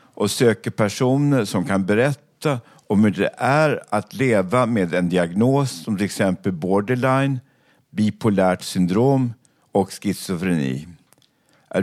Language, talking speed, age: Swedish, 120 wpm, 50-69